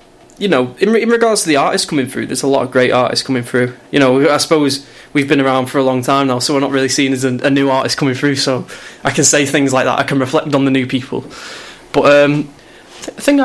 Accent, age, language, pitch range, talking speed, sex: British, 20-39, English, 130-150 Hz, 270 wpm, male